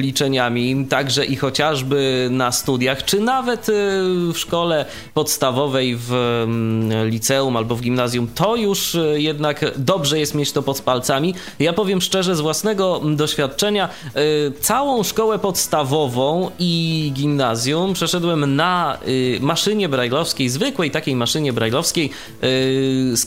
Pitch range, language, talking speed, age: 130-170 Hz, Polish, 115 wpm, 20-39